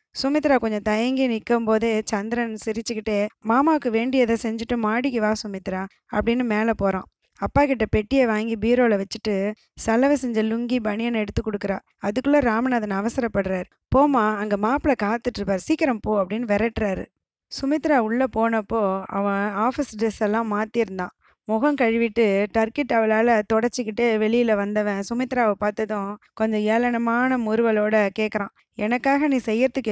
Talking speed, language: 120 wpm, Tamil